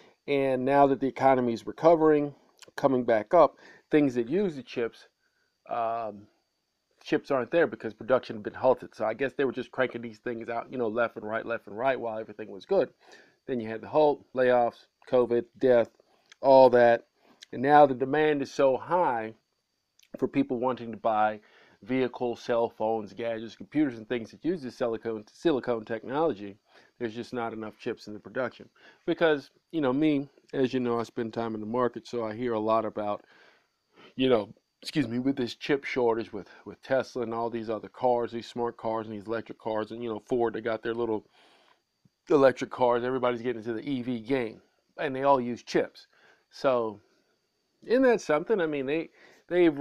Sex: male